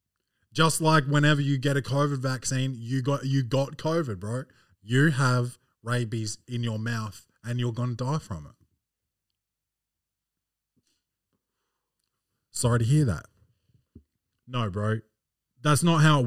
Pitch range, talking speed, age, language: 115-140 Hz, 135 wpm, 20-39, English